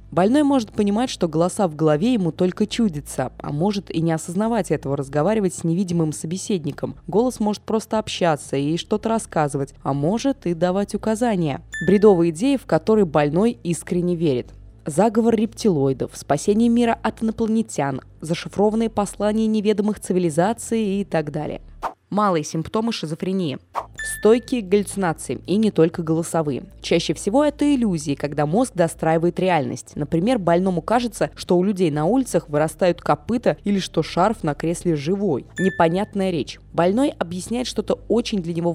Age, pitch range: 20-39, 160-215 Hz